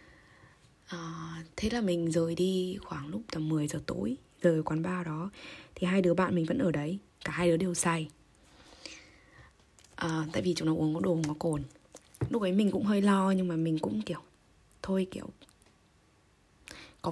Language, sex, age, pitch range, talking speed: Vietnamese, female, 20-39, 160-185 Hz, 185 wpm